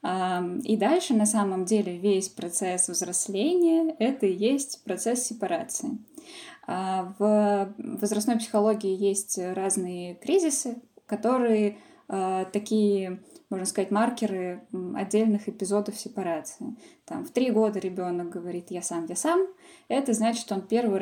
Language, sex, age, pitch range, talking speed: Russian, female, 10-29, 185-235 Hz, 130 wpm